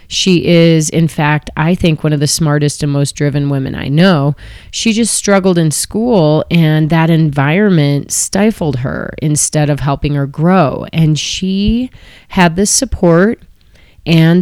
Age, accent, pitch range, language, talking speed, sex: 30-49, American, 140-170 Hz, English, 155 wpm, female